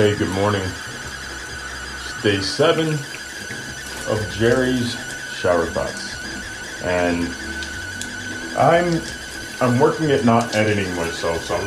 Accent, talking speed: American, 100 wpm